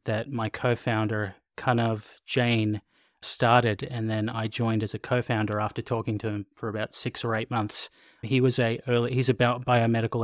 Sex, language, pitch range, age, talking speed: male, English, 110-120 Hz, 30-49, 190 wpm